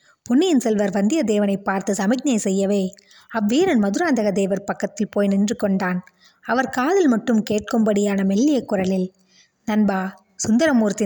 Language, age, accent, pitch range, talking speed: Tamil, 20-39, native, 195-240 Hz, 115 wpm